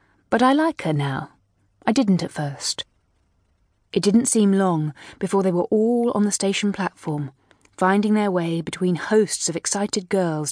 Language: English